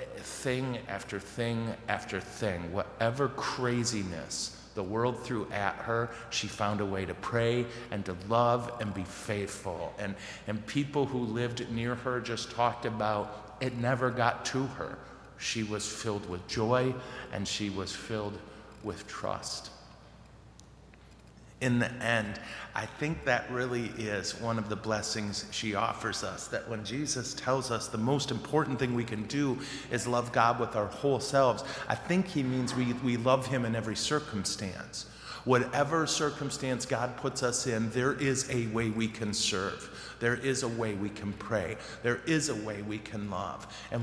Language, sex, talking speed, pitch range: English, male, 170 wpm, 105-130 Hz